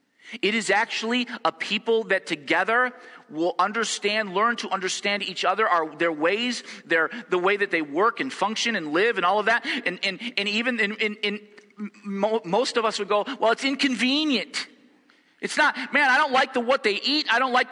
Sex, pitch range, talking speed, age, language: male, 210-275 Hz, 205 wpm, 40-59, English